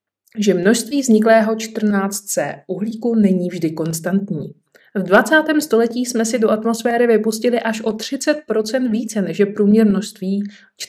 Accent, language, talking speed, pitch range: native, Czech, 130 wpm, 195-230 Hz